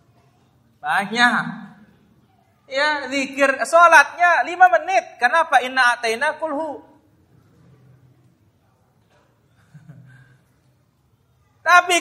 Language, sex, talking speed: Indonesian, male, 50 wpm